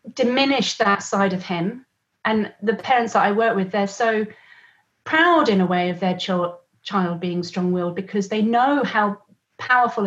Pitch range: 185-235 Hz